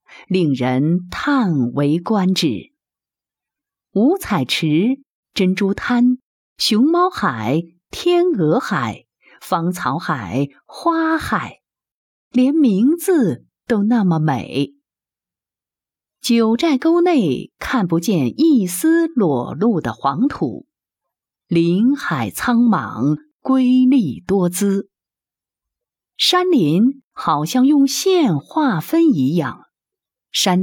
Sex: female